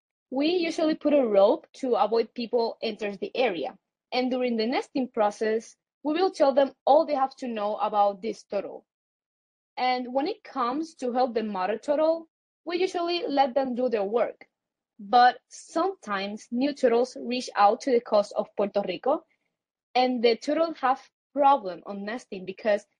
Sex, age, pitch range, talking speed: female, 20-39, 220-280 Hz, 165 wpm